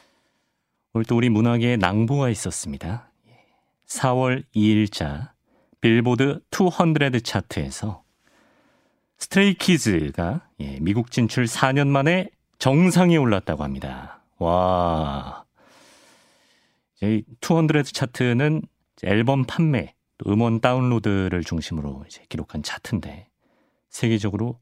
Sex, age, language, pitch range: male, 40-59, Korean, 100-140 Hz